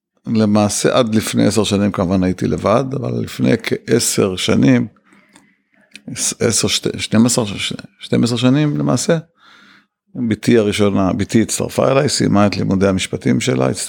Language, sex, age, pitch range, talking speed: Hebrew, male, 50-69, 100-120 Hz, 130 wpm